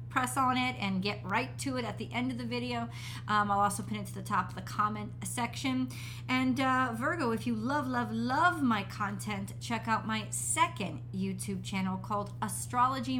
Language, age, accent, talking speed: English, 40-59, American, 200 wpm